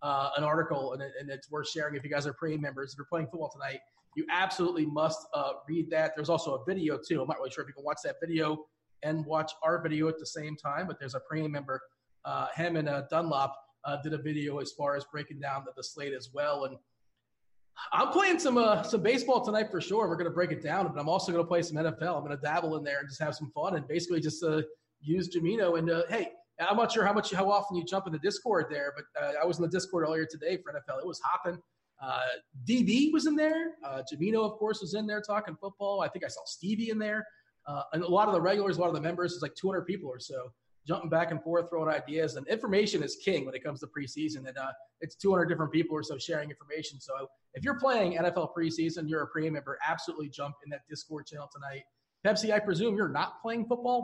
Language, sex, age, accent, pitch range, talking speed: English, male, 30-49, American, 145-185 Hz, 260 wpm